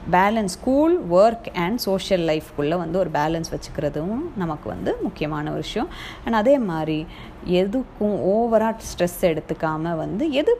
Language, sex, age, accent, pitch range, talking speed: English, female, 20-39, Indian, 165-245 Hz, 140 wpm